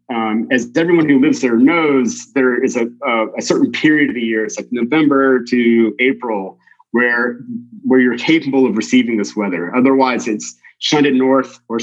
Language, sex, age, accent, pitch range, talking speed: English, male, 30-49, American, 120-180 Hz, 180 wpm